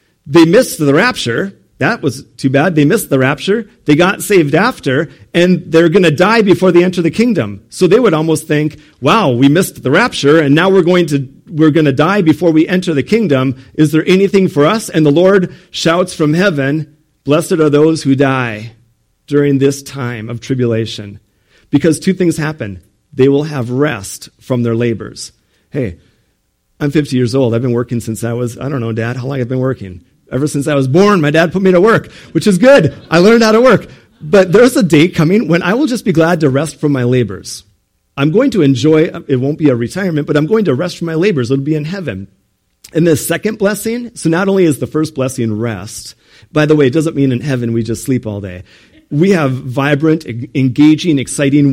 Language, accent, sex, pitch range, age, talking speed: English, American, male, 125-170 Hz, 40-59, 215 wpm